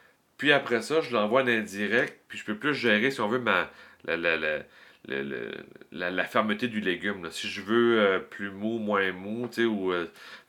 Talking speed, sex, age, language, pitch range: 225 wpm, male, 40-59, French, 90-115 Hz